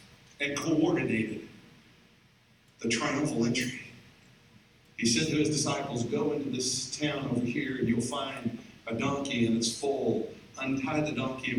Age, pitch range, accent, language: 50-69, 125-165 Hz, American, English